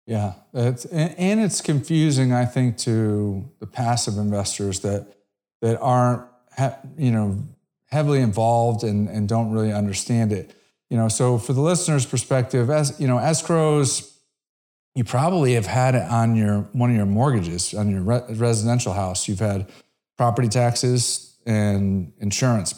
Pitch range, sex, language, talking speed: 100-130 Hz, male, English, 150 wpm